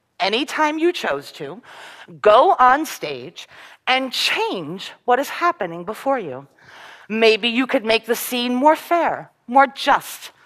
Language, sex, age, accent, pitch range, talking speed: English, female, 40-59, American, 210-320 Hz, 145 wpm